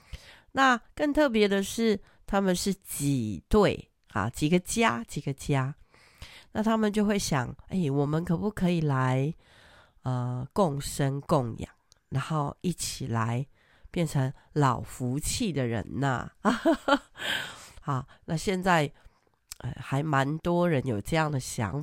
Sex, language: female, Chinese